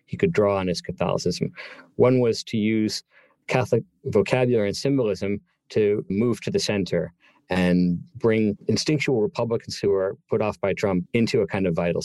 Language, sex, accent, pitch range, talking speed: English, male, American, 105-145 Hz, 170 wpm